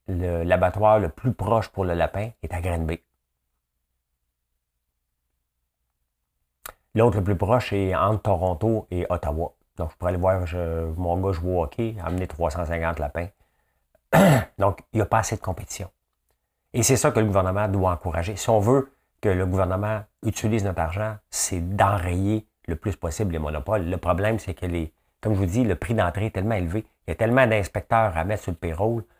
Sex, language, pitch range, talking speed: male, French, 80-105 Hz, 185 wpm